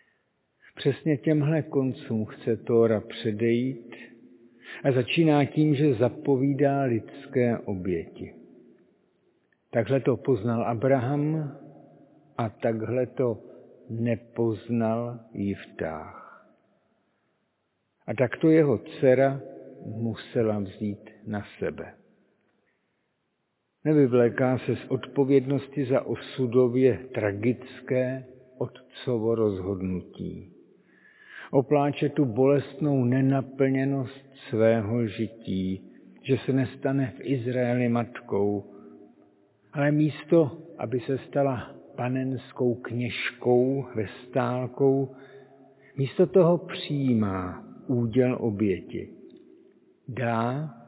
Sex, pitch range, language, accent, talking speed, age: male, 115-140 Hz, Czech, native, 80 wpm, 50-69